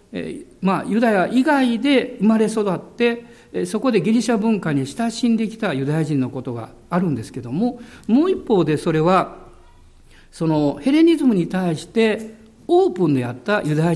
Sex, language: male, Japanese